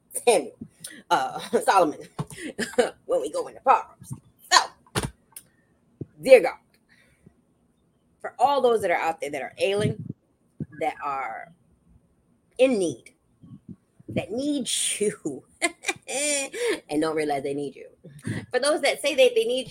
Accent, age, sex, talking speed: American, 20-39, female, 125 wpm